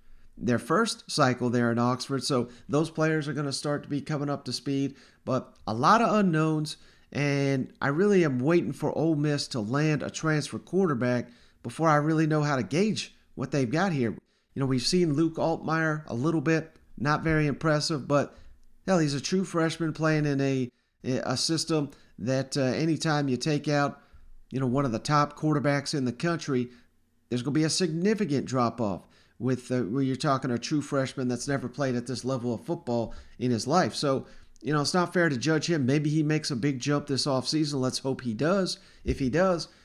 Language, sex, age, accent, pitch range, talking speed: English, male, 40-59, American, 125-160 Hz, 205 wpm